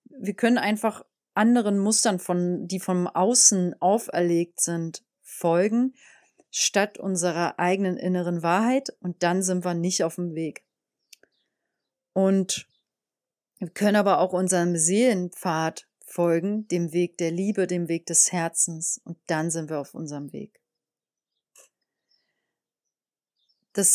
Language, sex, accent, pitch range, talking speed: German, female, German, 170-200 Hz, 125 wpm